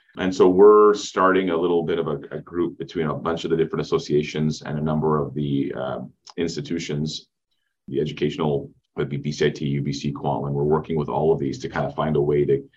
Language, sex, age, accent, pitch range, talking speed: English, male, 30-49, American, 75-90 Hz, 210 wpm